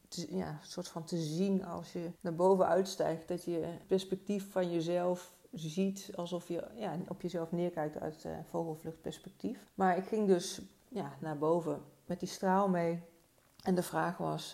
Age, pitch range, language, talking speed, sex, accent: 40-59, 165-190 Hz, Dutch, 180 wpm, female, Dutch